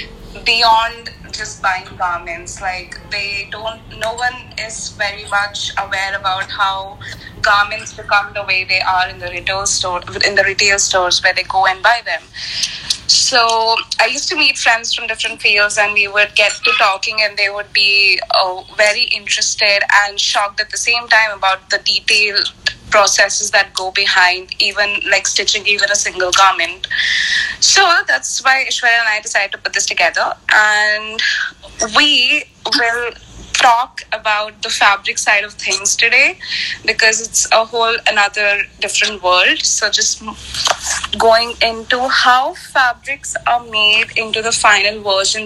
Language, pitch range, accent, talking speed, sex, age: English, 200-235 Hz, Indian, 155 wpm, female, 20-39